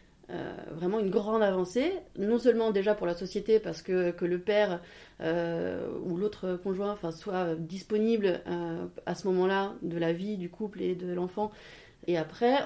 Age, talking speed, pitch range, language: 30-49, 175 wpm, 180-215 Hz, French